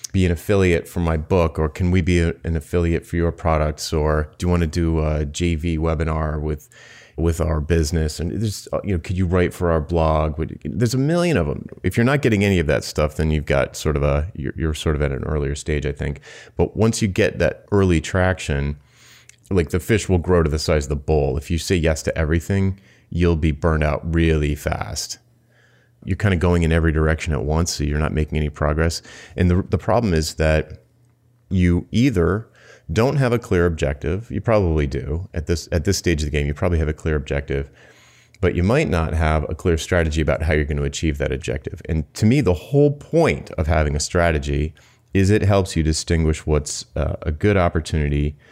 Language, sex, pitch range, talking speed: English, male, 75-90 Hz, 220 wpm